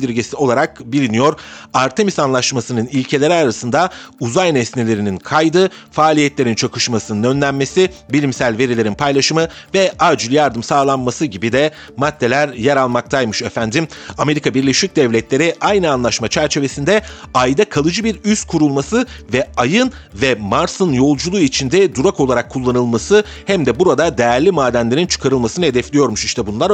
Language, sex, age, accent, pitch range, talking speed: Turkish, male, 40-59, native, 115-150 Hz, 125 wpm